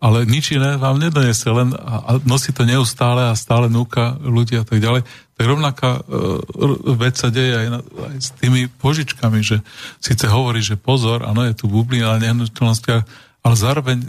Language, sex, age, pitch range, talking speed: Slovak, male, 40-59, 110-125 Hz, 180 wpm